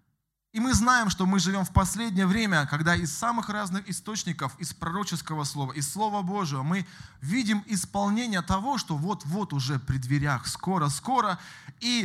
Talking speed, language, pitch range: 155 wpm, Russian, 150-200 Hz